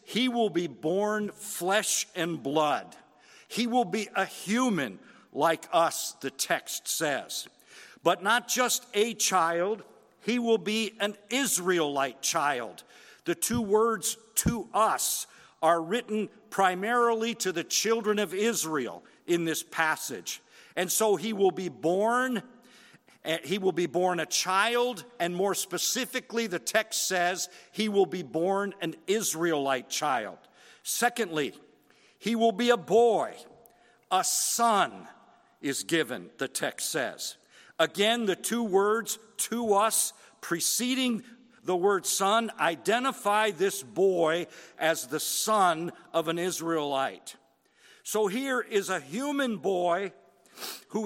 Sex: male